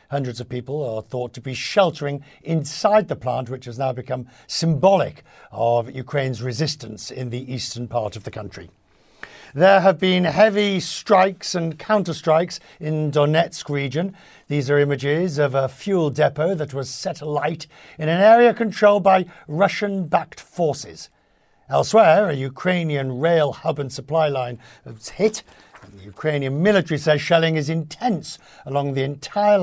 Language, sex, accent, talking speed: English, male, British, 150 wpm